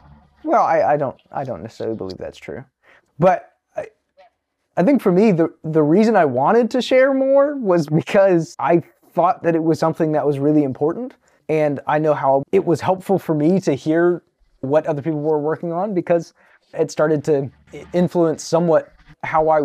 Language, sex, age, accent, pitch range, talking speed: English, male, 20-39, American, 145-175 Hz, 185 wpm